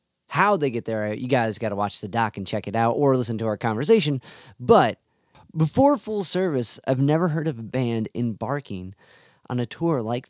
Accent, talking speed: American, 205 wpm